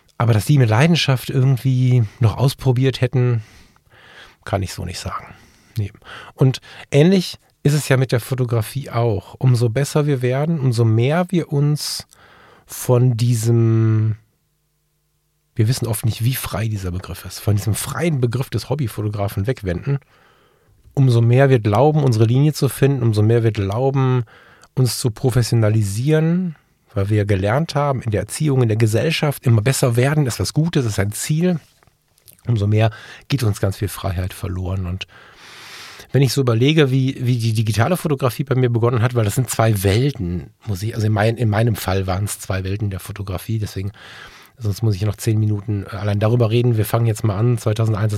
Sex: male